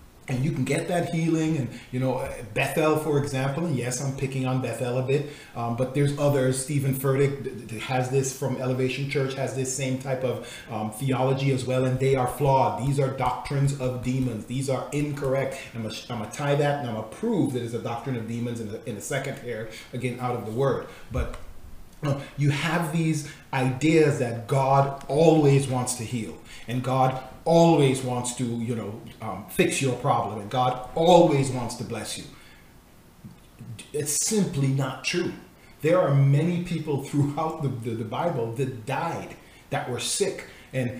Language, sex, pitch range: English, male, 125-150 Hz